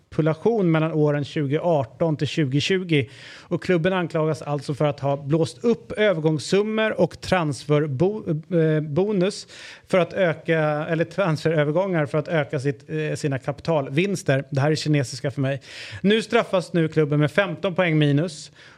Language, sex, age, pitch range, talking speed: Swedish, male, 30-49, 145-175 Hz, 135 wpm